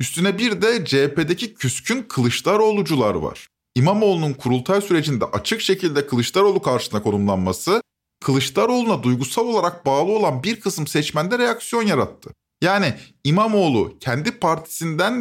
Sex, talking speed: male, 115 wpm